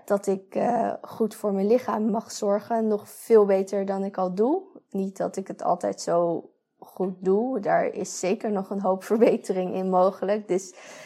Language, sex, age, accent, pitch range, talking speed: Dutch, female, 20-39, Dutch, 190-220 Hz, 185 wpm